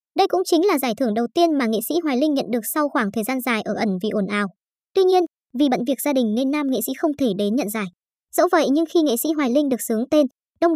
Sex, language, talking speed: male, Vietnamese, 295 wpm